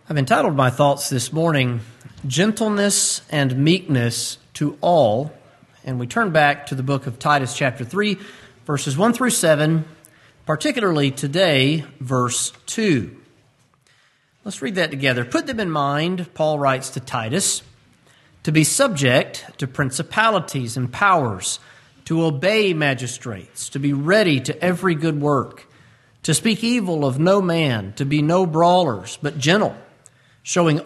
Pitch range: 135-180 Hz